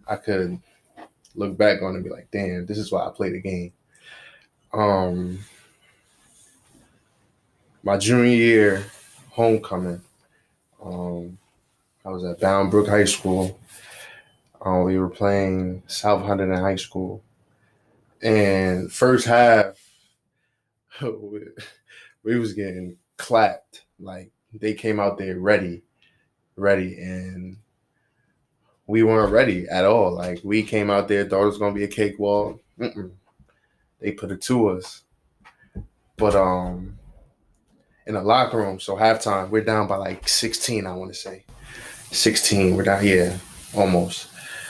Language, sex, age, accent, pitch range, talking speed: English, male, 20-39, American, 95-110 Hz, 135 wpm